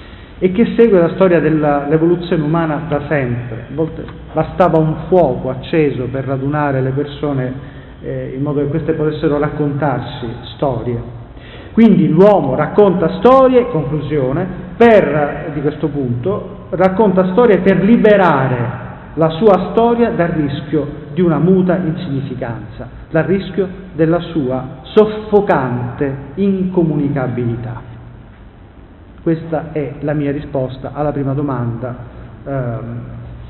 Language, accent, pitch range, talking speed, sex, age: Italian, native, 120-170 Hz, 115 wpm, male, 40-59